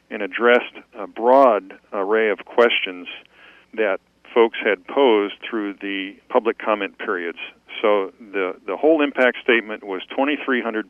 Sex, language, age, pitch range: male, English, 50-69, 100-120 Hz